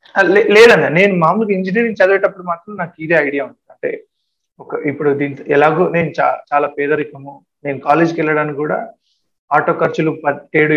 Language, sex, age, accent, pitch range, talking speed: Telugu, male, 30-49, native, 140-185 Hz, 150 wpm